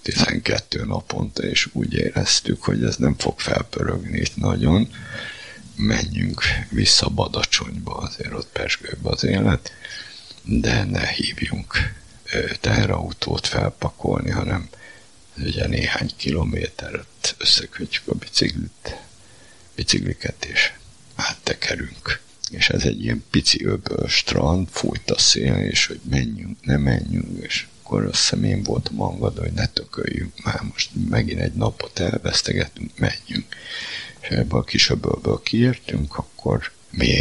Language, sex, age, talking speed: Hungarian, male, 60-79, 120 wpm